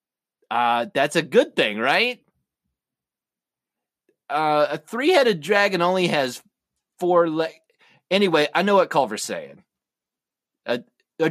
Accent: American